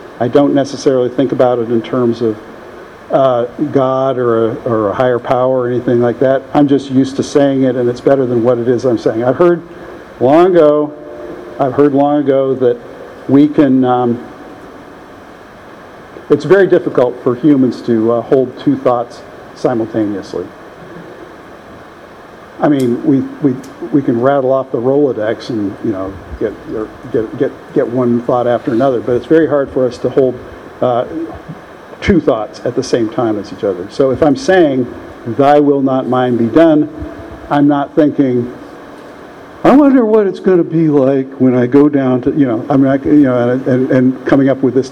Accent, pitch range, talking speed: American, 125-145 Hz, 185 wpm